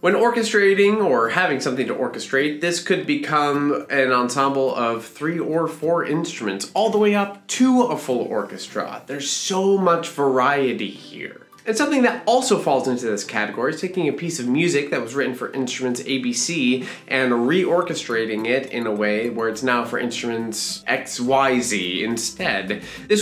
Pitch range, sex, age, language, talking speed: 120-185 Hz, male, 20-39, English, 165 wpm